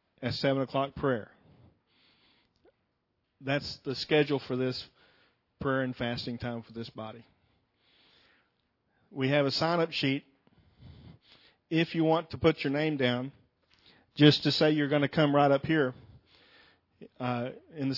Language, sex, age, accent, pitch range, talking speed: English, male, 40-59, American, 130-150 Hz, 140 wpm